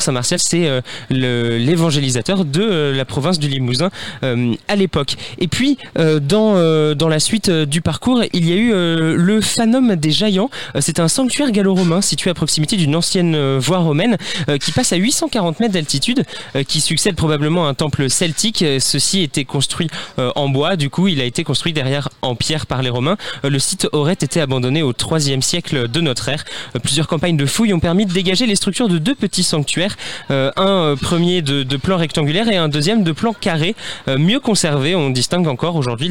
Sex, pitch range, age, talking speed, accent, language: male, 145-195 Hz, 20-39, 210 wpm, French, French